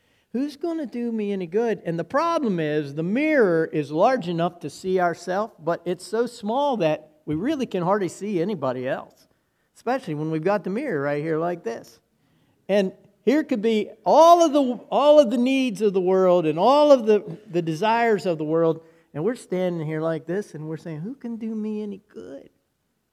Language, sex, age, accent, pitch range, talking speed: English, male, 50-69, American, 145-210 Hz, 205 wpm